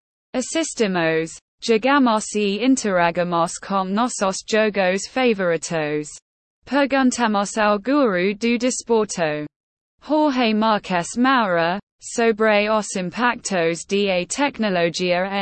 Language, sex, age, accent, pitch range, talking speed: English, female, 20-39, British, 175-235 Hz, 80 wpm